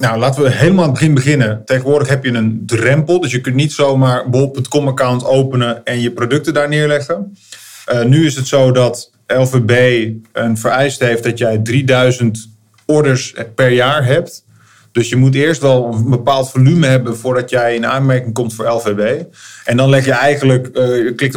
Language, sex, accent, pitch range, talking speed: Dutch, male, Dutch, 115-130 Hz, 185 wpm